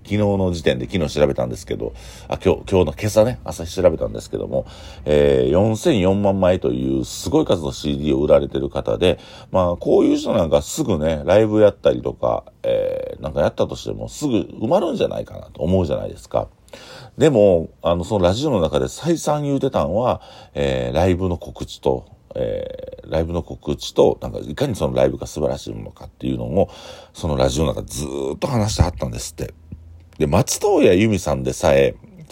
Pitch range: 70-95 Hz